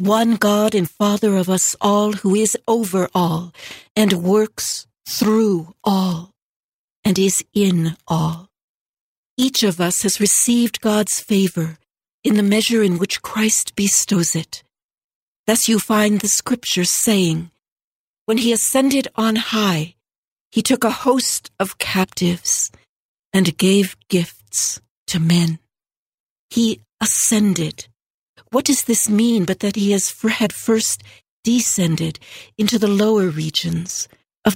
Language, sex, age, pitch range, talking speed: English, female, 60-79, 180-220 Hz, 130 wpm